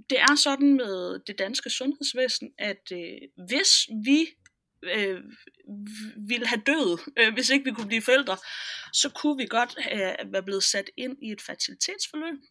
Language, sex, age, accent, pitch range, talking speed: Danish, female, 20-39, native, 215-280 Hz, 160 wpm